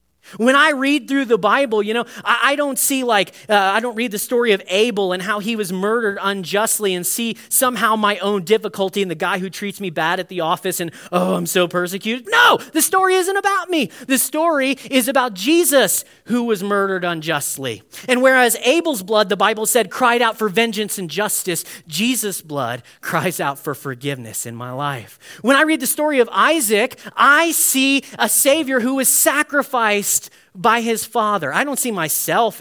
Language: English